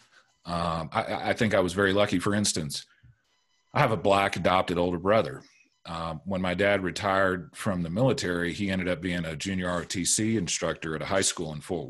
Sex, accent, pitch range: male, American, 90-120 Hz